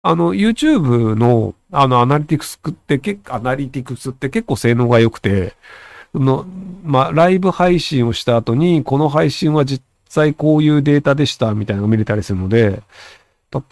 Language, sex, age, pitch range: Japanese, male, 40-59, 105-155 Hz